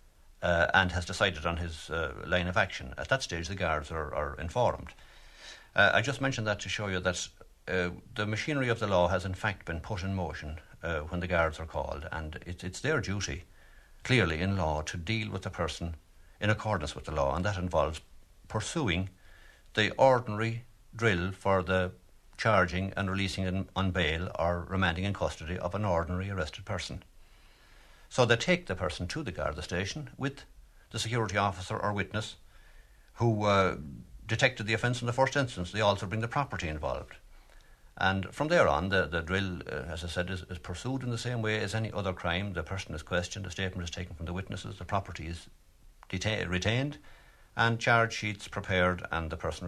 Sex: male